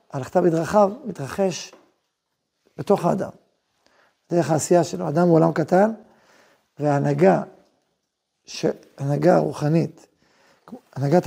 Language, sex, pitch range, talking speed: Hebrew, male, 150-195 Hz, 80 wpm